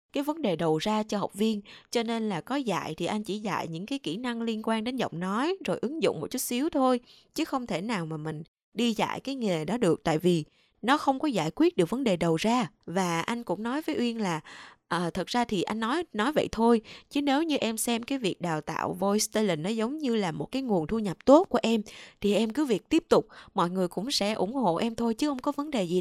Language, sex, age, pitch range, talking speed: Vietnamese, female, 20-39, 185-255 Hz, 265 wpm